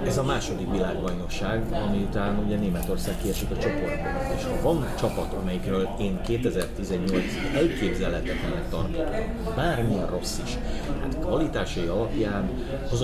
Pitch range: 95-115 Hz